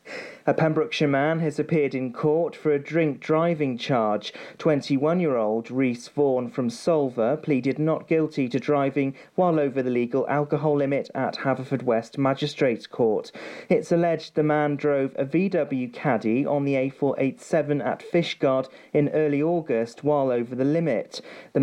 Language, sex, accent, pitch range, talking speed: English, male, British, 135-160 Hz, 150 wpm